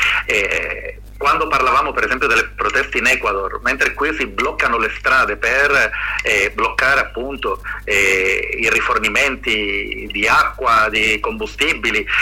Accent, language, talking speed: native, Italian, 130 wpm